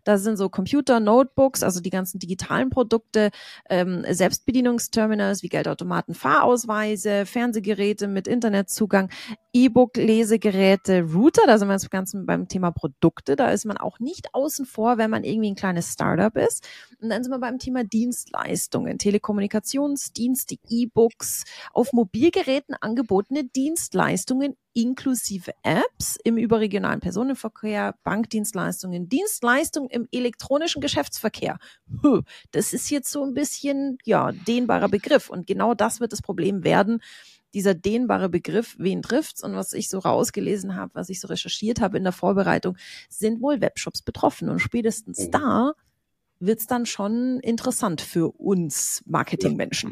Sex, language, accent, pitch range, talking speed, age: female, German, German, 195-255 Hz, 140 wpm, 30-49